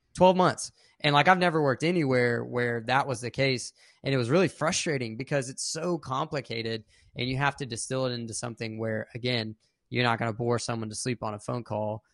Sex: male